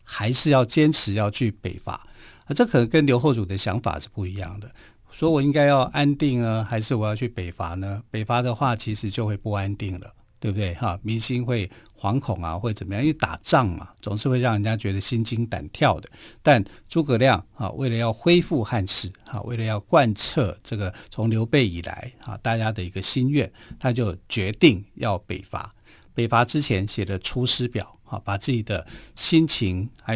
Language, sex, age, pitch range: Chinese, male, 50-69, 100-130 Hz